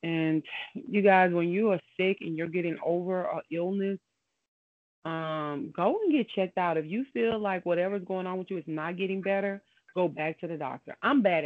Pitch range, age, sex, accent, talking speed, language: 155-180 Hz, 30-49, female, American, 205 wpm, English